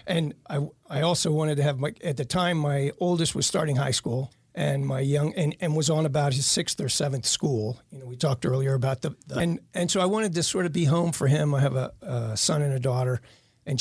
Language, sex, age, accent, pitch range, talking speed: English, male, 40-59, American, 130-155 Hz, 255 wpm